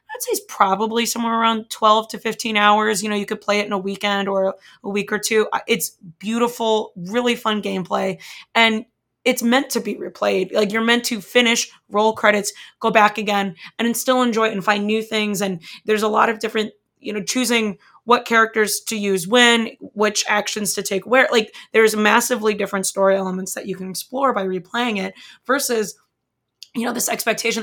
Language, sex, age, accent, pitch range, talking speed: English, female, 20-39, American, 200-230 Hz, 195 wpm